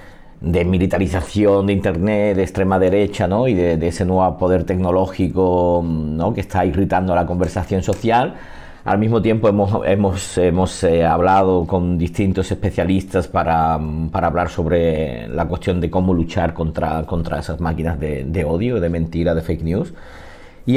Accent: Spanish